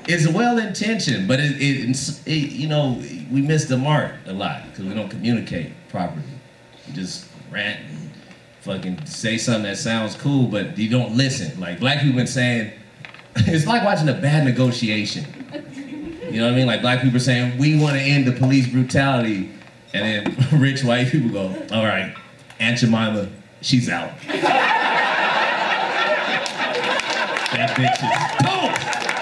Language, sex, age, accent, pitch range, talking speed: English, male, 30-49, American, 120-145 Hz, 160 wpm